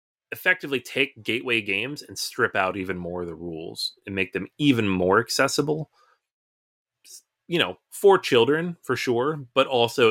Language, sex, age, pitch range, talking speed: English, male, 30-49, 95-125 Hz, 155 wpm